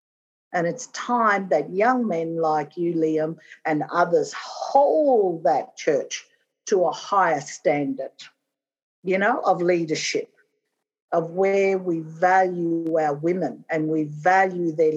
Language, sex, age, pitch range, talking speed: English, female, 50-69, 165-265 Hz, 130 wpm